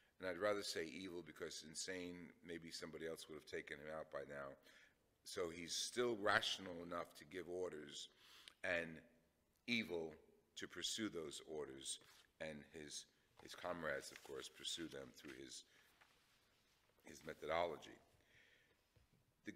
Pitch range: 90-130 Hz